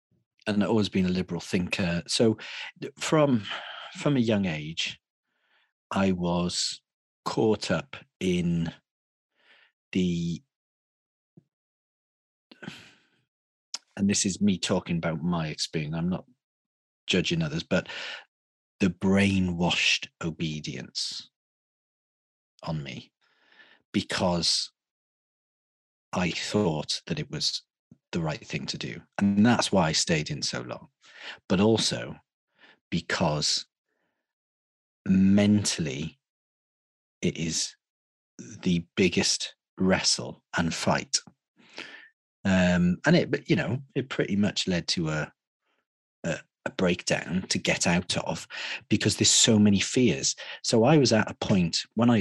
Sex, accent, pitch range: male, British, 85-110 Hz